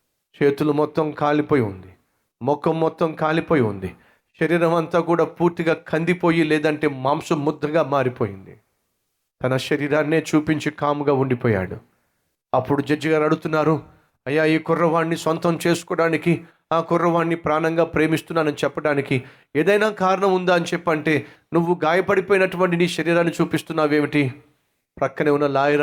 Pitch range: 145-200 Hz